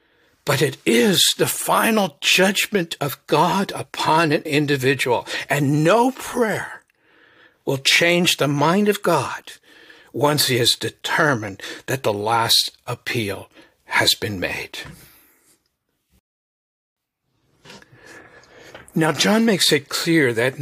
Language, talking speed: English, 110 wpm